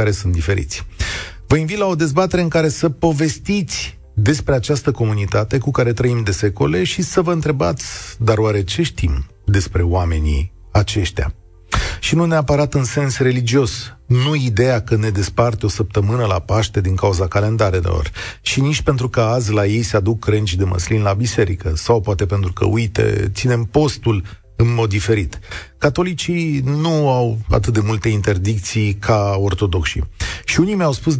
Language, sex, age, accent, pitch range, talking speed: Romanian, male, 40-59, native, 100-135 Hz, 165 wpm